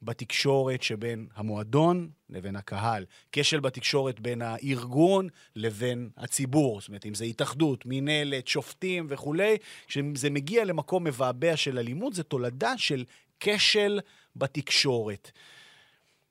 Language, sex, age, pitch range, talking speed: Hebrew, male, 30-49, 135-185 Hz, 110 wpm